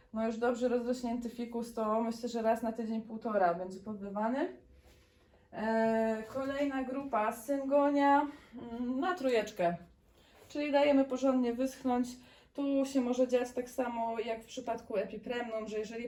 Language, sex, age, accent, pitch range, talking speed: Polish, female, 20-39, native, 220-250 Hz, 130 wpm